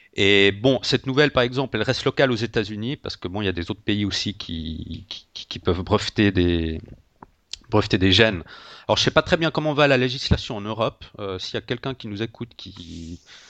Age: 40-59